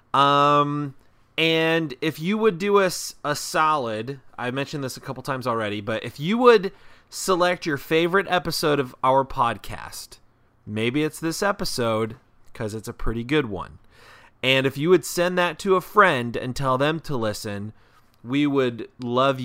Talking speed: 170 wpm